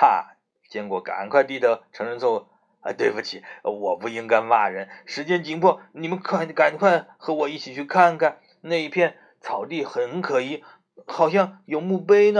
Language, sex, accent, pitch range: Chinese, male, native, 155-215 Hz